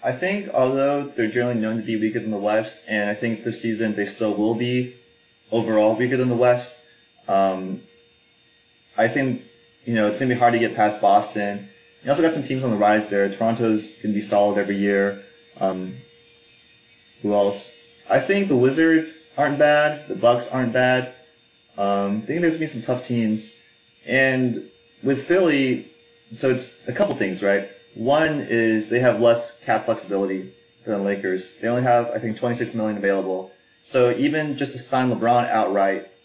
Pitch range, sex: 100-125 Hz, male